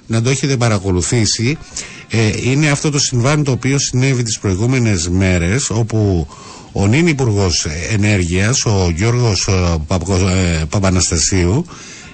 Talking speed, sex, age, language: 110 wpm, male, 60-79, Greek